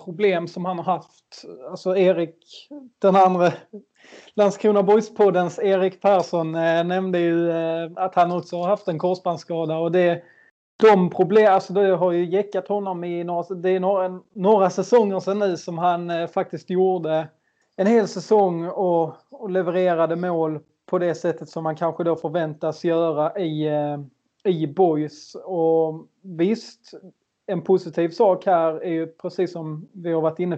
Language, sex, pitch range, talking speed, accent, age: Swedish, male, 160-185 Hz, 165 wpm, native, 20-39